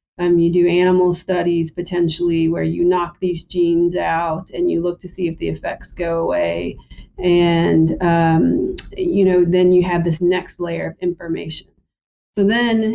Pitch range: 170-185 Hz